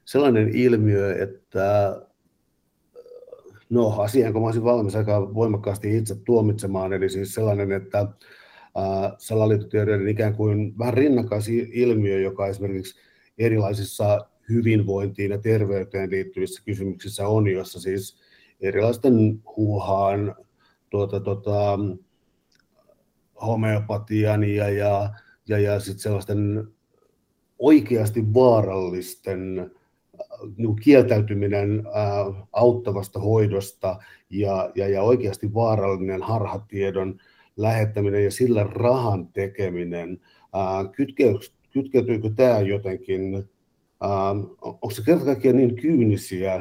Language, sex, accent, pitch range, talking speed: Finnish, male, native, 95-110 Hz, 90 wpm